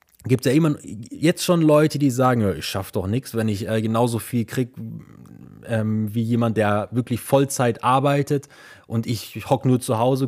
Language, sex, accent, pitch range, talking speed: German, male, German, 110-135 Hz, 185 wpm